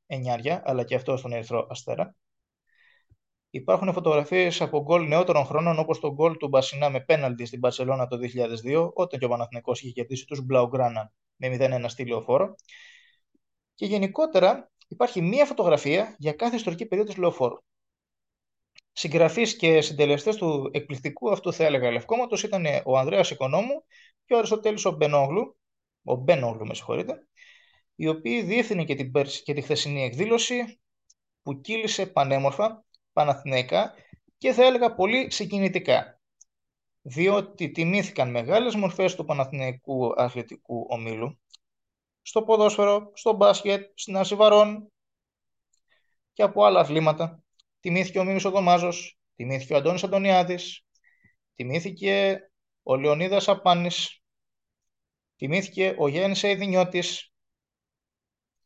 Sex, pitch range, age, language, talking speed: male, 135-200 Hz, 20-39, Greek, 120 wpm